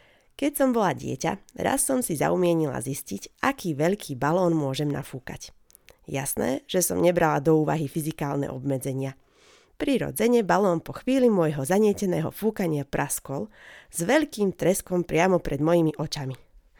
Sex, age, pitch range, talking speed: female, 30-49, 150-210 Hz, 130 wpm